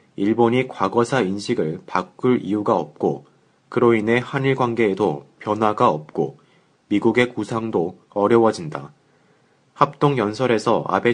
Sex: male